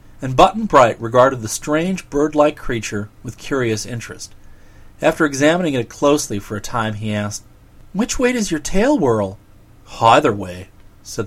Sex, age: male, 40-59